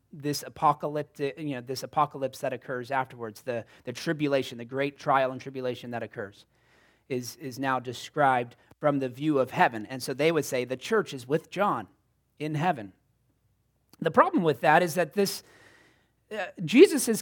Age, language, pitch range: 40-59, English, 140-210 Hz